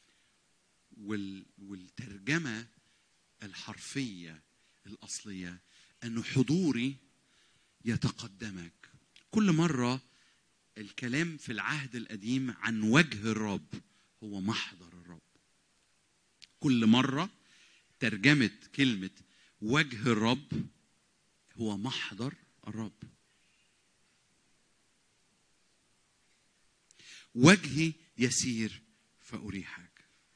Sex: male